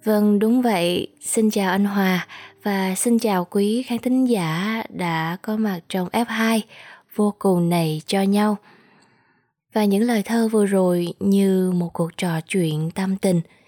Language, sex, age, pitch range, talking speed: Vietnamese, female, 20-39, 175-215 Hz, 160 wpm